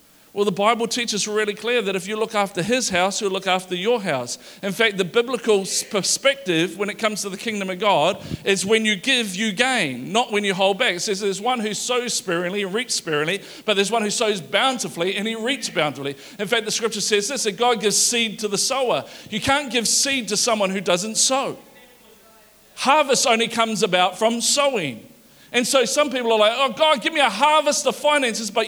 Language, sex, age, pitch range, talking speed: English, male, 40-59, 205-270 Hz, 220 wpm